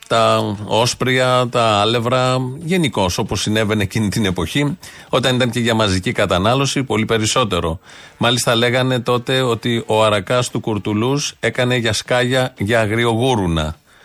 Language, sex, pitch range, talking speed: Greek, male, 110-135 Hz, 130 wpm